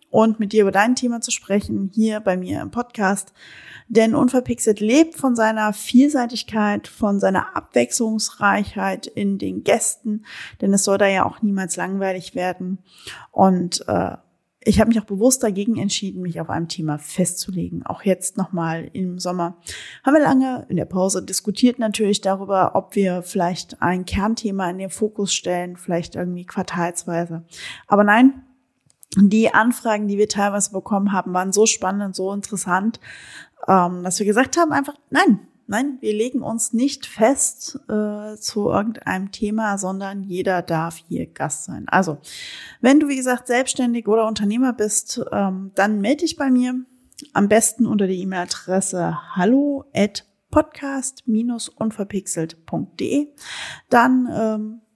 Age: 20-39